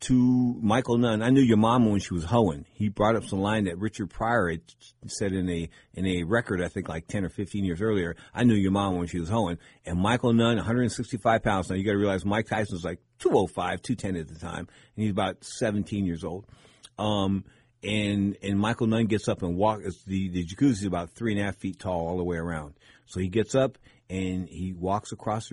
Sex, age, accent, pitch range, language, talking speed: male, 50-69, American, 95-115 Hz, English, 235 wpm